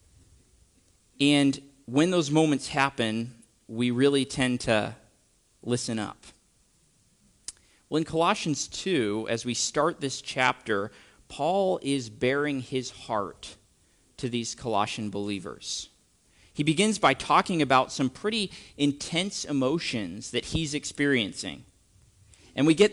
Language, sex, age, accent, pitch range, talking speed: English, male, 40-59, American, 115-150 Hz, 115 wpm